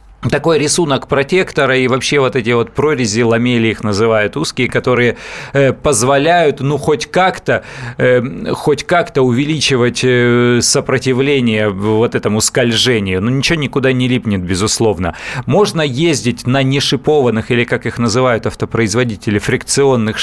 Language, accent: Russian, native